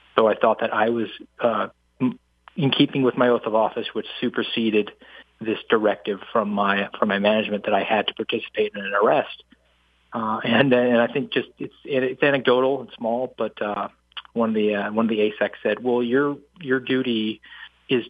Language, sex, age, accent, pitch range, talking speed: English, male, 30-49, American, 110-130 Hz, 190 wpm